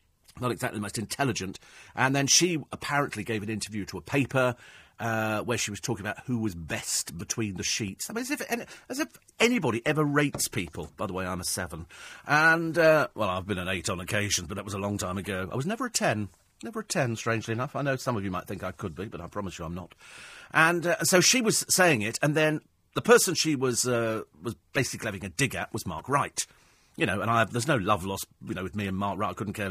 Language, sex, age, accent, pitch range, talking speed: English, male, 40-59, British, 100-145 Hz, 255 wpm